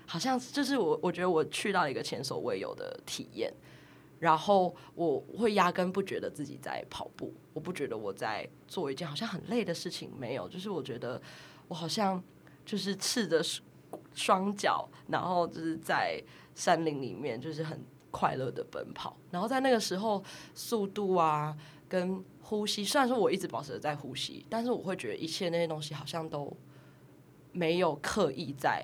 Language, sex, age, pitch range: Chinese, female, 20-39, 155-195 Hz